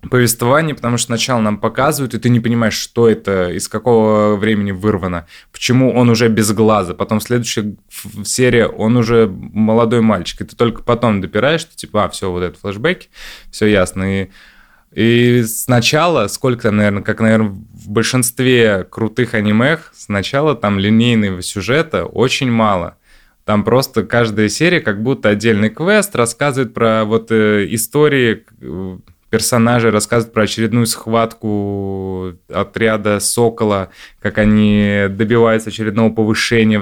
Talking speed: 135 wpm